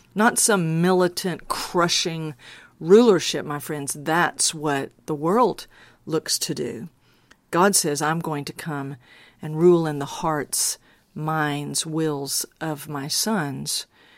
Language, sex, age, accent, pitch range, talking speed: English, female, 50-69, American, 150-175 Hz, 125 wpm